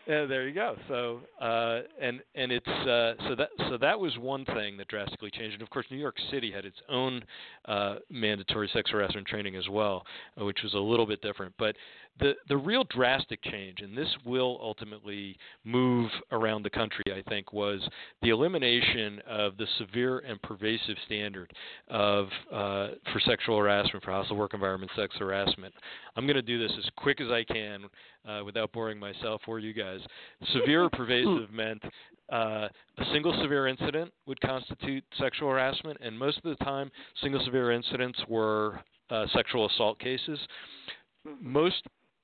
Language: English